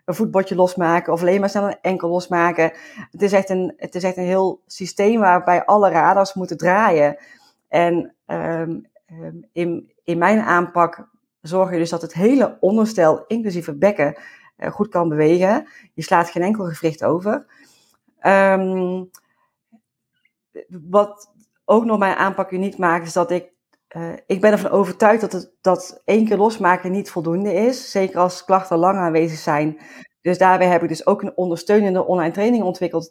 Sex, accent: female, Dutch